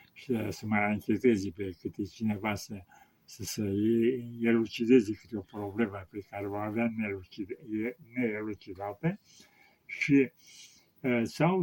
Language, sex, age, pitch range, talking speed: Romanian, male, 60-79, 110-150 Hz, 110 wpm